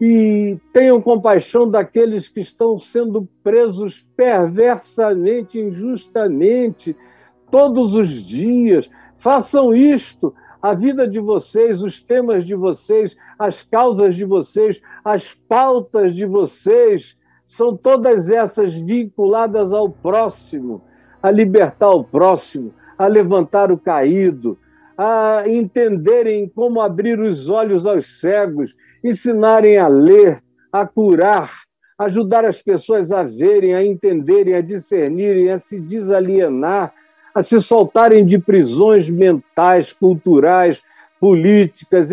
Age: 60-79